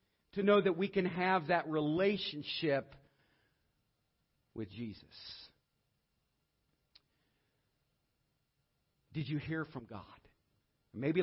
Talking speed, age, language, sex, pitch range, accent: 85 wpm, 50-69, English, male, 120-200 Hz, American